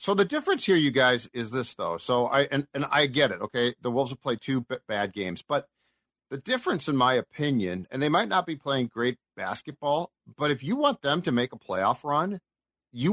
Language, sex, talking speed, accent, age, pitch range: English, male, 225 wpm, American, 50-69, 130-165 Hz